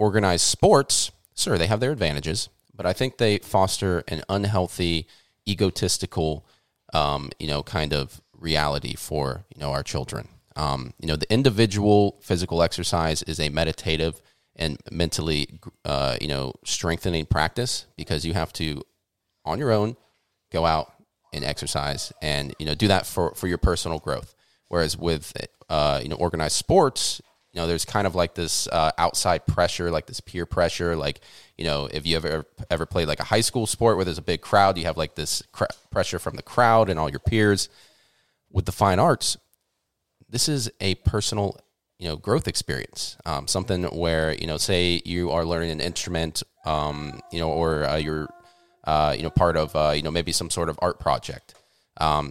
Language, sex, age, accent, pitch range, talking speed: English, male, 30-49, American, 75-95 Hz, 185 wpm